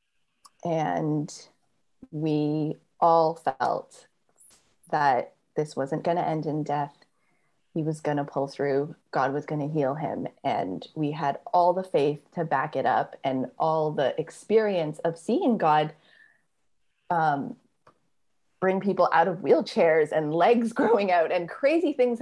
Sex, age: female, 20-39